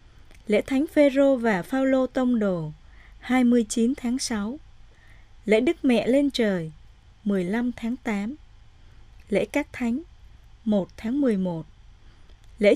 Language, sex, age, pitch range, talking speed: Vietnamese, female, 20-39, 185-255 Hz, 120 wpm